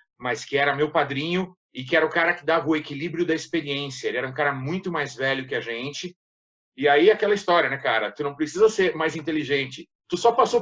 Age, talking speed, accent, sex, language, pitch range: 50-69, 230 wpm, Brazilian, male, Portuguese, 155-215 Hz